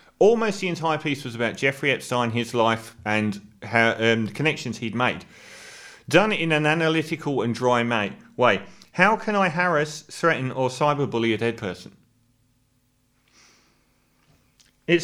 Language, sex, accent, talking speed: English, male, British, 140 wpm